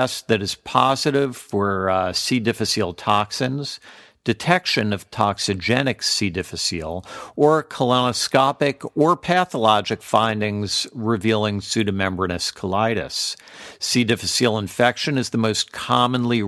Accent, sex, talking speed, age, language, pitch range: American, male, 100 wpm, 50-69, English, 100-130 Hz